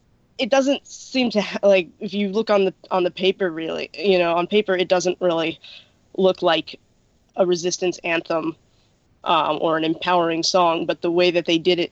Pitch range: 165-200 Hz